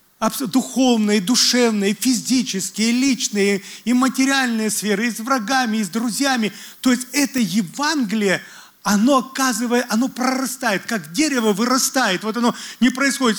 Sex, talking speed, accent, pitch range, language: male, 125 wpm, native, 200-255 Hz, Russian